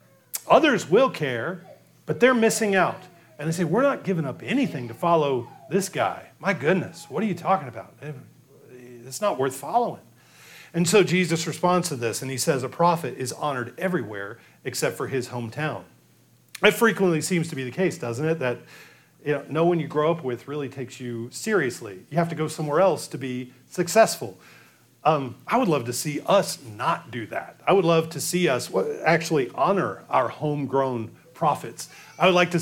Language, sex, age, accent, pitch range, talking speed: English, male, 40-59, American, 135-190 Hz, 190 wpm